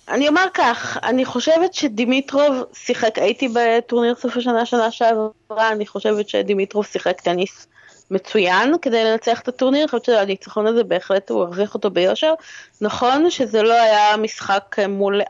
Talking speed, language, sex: 155 wpm, Hebrew, female